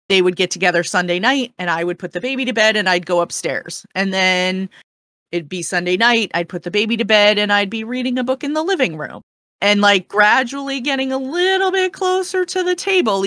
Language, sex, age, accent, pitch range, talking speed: English, female, 30-49, American, 160-210 Hz, 230 wpm